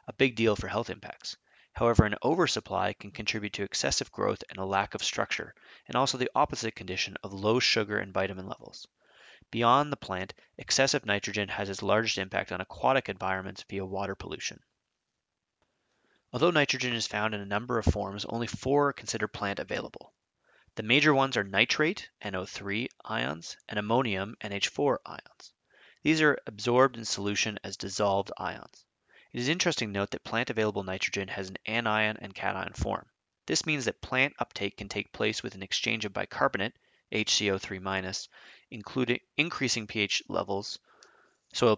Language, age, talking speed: English, 30-49, 160 wpm